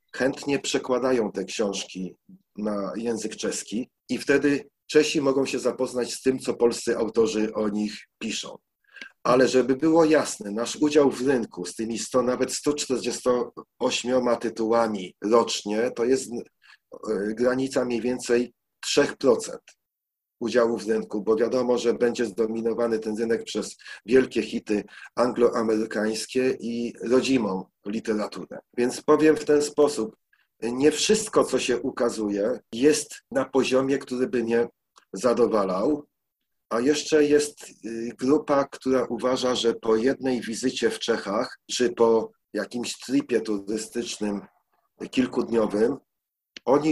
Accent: native